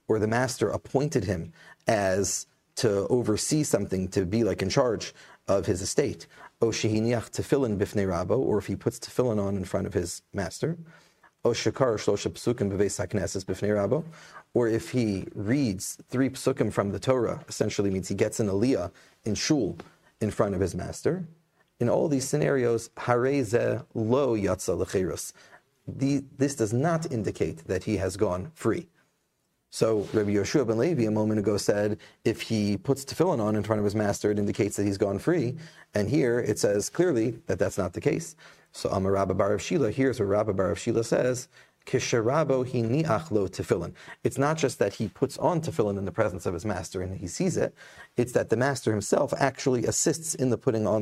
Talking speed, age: 165 wpm, 30-49